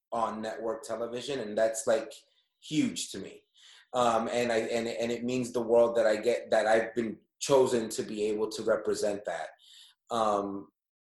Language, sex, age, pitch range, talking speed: English, male, 30-49, 115-150 Hz, 175 wpm